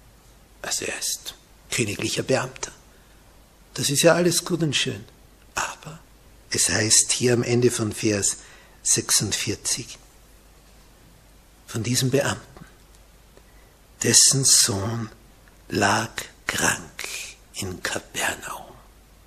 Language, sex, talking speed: German, male, 95 wpm